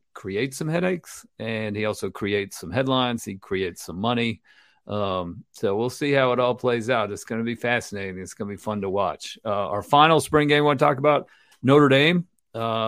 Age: 50-69